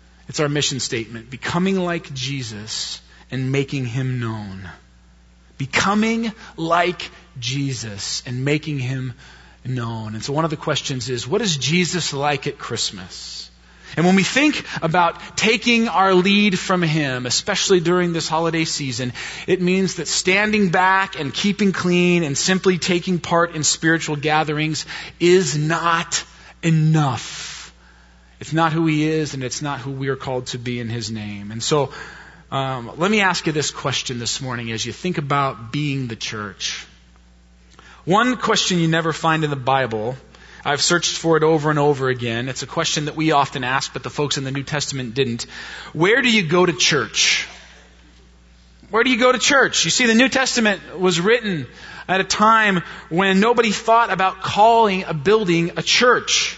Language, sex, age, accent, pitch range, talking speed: English, male, 30-49, American, 125-180 Hz, 170 wpm